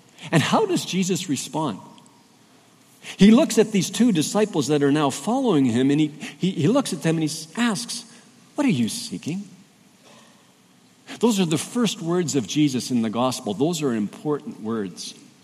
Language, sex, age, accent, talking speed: English, male, 50-69, American, 170 wpm